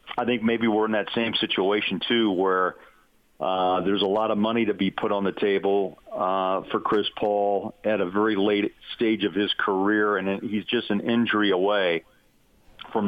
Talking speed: 190 wpm